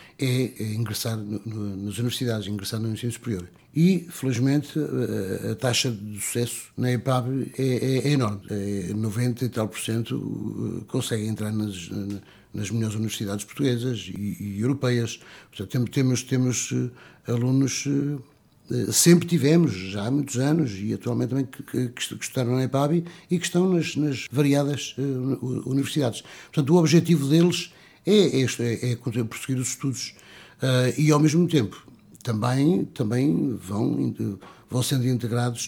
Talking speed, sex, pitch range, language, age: 140 wpm, male, 110-135 Hz, Portuguese, 60-79